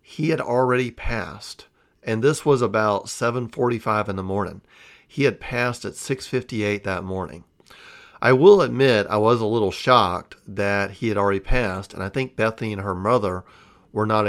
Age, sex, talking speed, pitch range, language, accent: 40-59, male, 170 wpm, 95-120 Hz, English, American